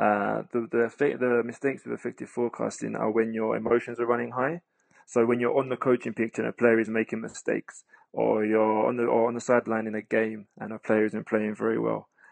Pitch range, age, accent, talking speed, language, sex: 110-125 Hz, 20-39, British, 225 wpm, English, male